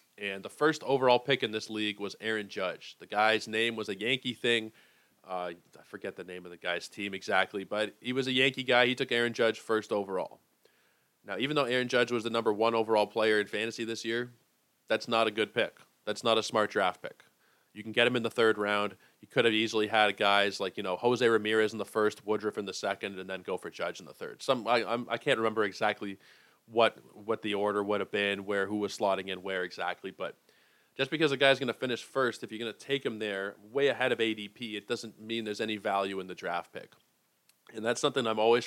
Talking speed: 240 wpm